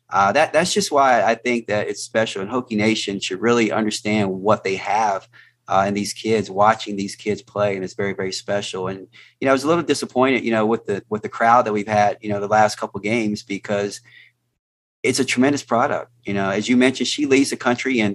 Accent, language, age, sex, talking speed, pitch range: American, English, 30-49, male, 240 wpm, 105-125 Hz